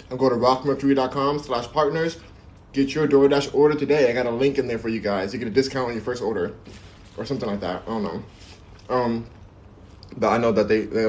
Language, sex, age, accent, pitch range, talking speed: English, male, 20-39, American, 110-140 Hz, 225 wpm